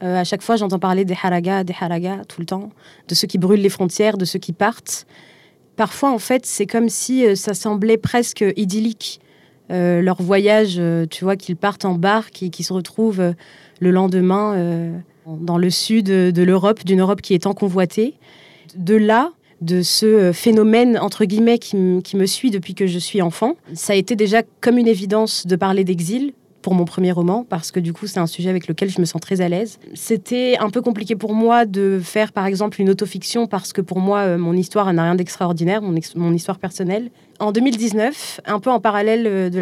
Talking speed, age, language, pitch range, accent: 210 wpm, 20-39, French, 180-215 Hz, French